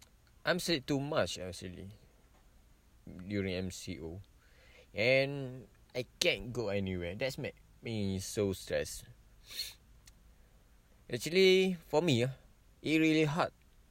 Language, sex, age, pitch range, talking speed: English, male, 20-39, 95-120 Hz, 100 wpm